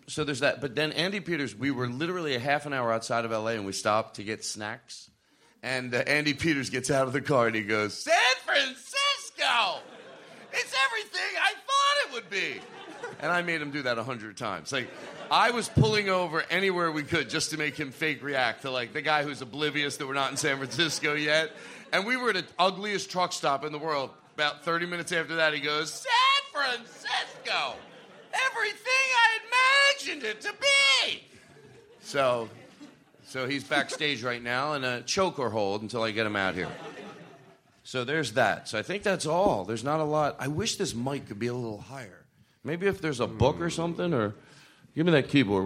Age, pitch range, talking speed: 40-59, 125-175 Hz, 205 wpm